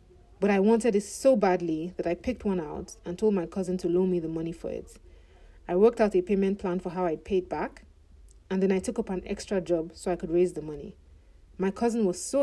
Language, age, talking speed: English, 30-49, 245 wpm